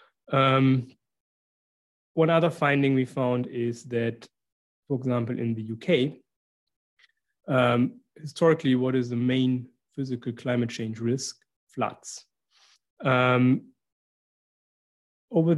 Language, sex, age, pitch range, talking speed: English, male, 30-49, 120-135 Hz, 100 wpm